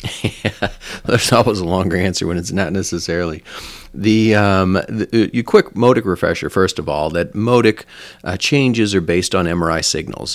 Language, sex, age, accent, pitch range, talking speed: English, male, 40-59, American, 90-120 Hz, 175 wpm